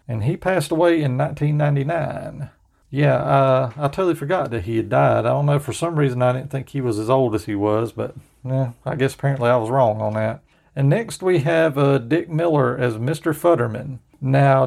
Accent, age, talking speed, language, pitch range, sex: American, 40-59, 215 wpm, English, 115-145 Hz, male